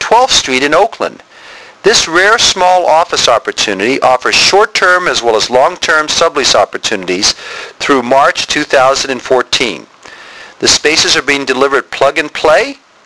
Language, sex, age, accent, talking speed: English, male, 50-69, American, 120 wpm